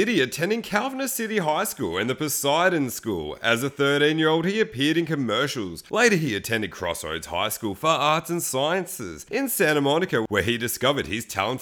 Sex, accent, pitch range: male, Australian, 130-175 Hz